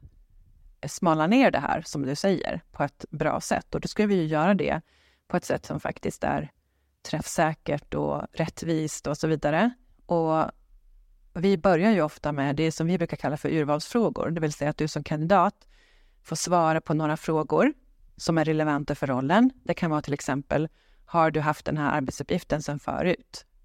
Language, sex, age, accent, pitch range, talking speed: English, female, 30-49, Swedish, 150-195 Hz, 185 wpm